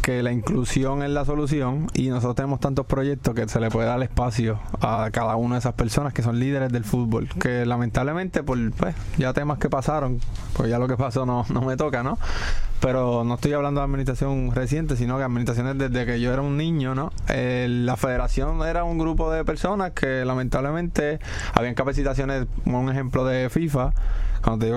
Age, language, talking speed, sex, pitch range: 20-39, Spanish, 200 wpm, male, 125-145 Hz